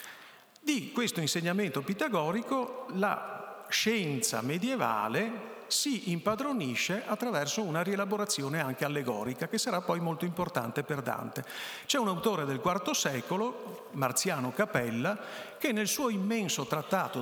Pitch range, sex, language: 140-220 Hz, male, Italian